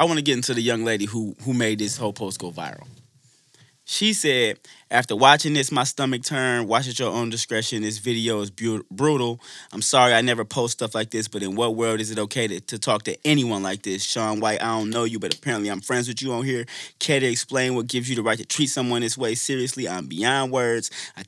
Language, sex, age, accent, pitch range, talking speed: English, male, 20-39, American, 110-130 Hz, 245 wpm